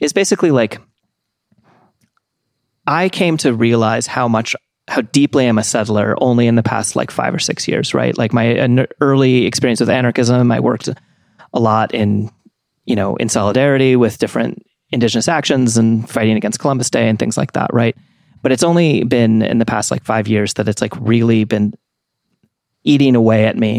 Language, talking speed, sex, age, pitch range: English, 185 wpm, male, 30-49, 110-130 Hz